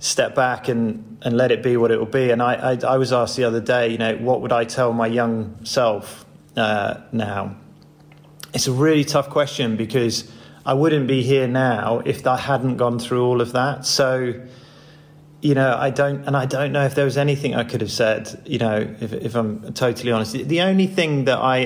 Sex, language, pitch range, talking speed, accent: male, English, 115-140 Hz, 220 wpm, British